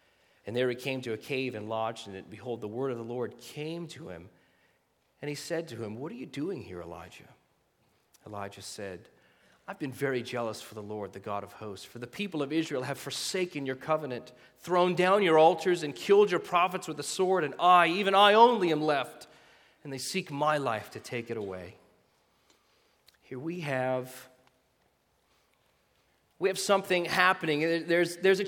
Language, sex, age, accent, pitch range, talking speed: English, male, 40-59, American, 140-215 Hz, 190 wpm